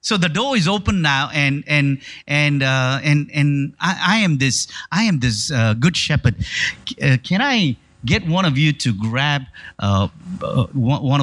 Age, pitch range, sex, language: 50-69, 125-180 Hz, male, English